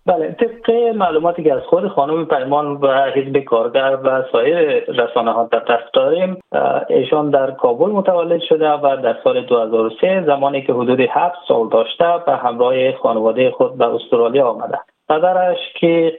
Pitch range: 125-185 Hz